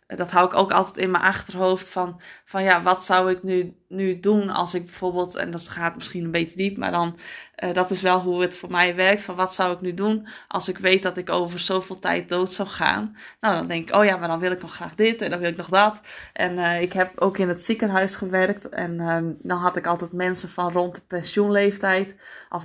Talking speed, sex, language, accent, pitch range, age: 250 wpm, female, Dutch, Dutch, 180-200 Hz, 20-39